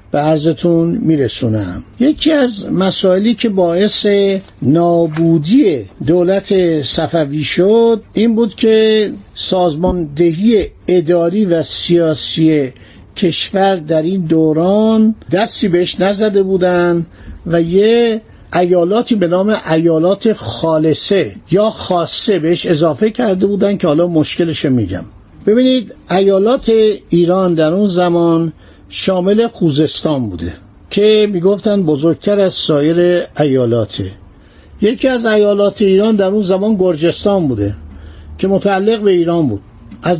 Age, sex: 50-69, male